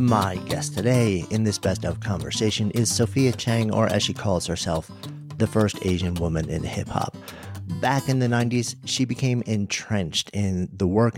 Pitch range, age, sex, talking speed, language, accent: 95-125 Hz, 50-69, male, 170 wpm, English, American